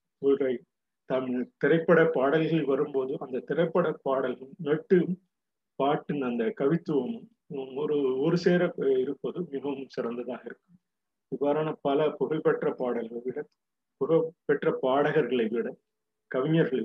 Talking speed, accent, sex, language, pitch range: 95 wpm, native, male, Tamil, 130-170 Hz